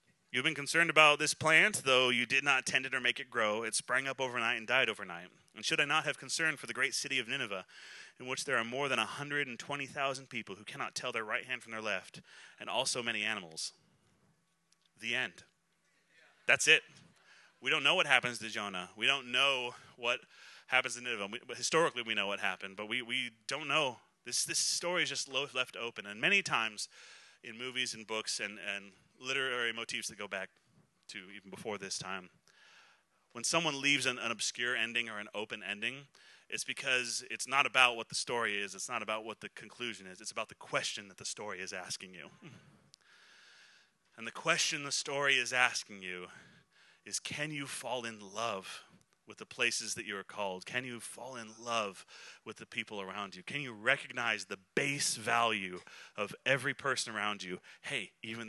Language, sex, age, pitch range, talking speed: English, male, 30-49, 110-140 Hz, 195 wpm